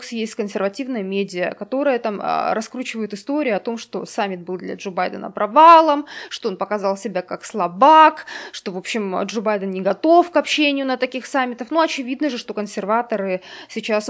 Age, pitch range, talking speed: 20-39, 205-275 Hz, 165 wpm